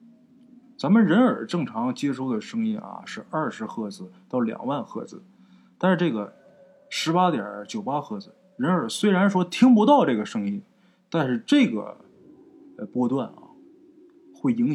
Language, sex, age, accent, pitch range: Chinese, male, 20-39, native, 165-240 Hz